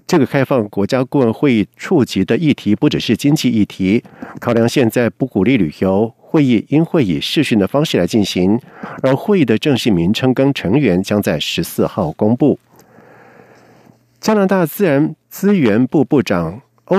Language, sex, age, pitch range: German, male, 50-69, 105-150 Hz